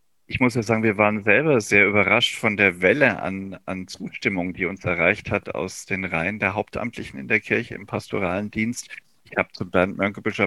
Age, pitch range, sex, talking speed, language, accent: 40-59, 90-115 Hz, male, 200 wpm, German, German